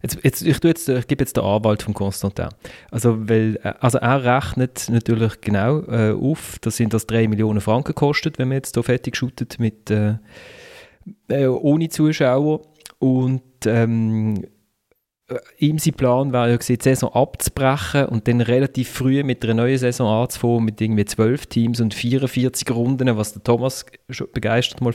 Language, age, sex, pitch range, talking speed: German, 30-49, male, 110-130 Hz, 170 wpm